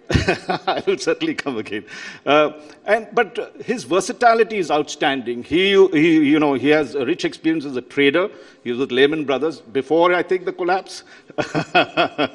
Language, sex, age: English, male, 50-69